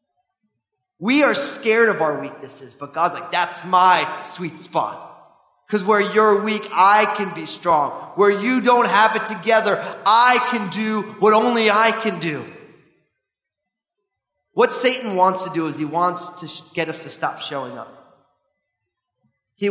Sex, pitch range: male, 150-215 Hz